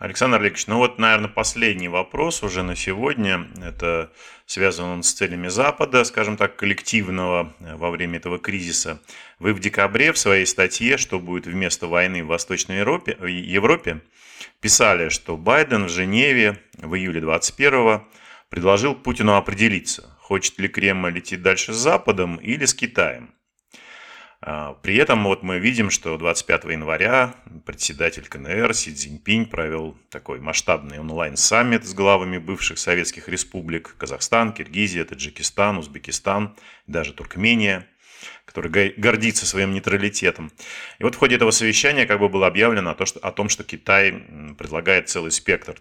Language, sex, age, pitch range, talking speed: Russian, male, 30-49, 85-105 Hz, 140 wpm